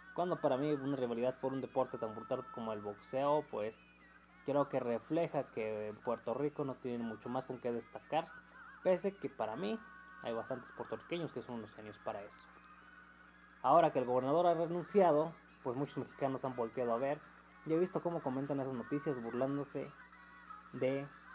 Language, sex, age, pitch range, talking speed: Spanish, male, 20-39, 125-160 Hz, 175 wpm